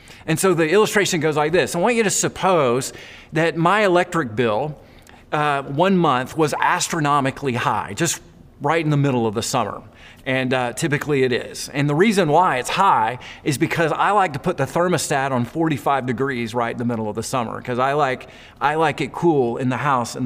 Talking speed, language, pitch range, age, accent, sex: 205 wpm, English, 130-175 Hz, 40-59, American, male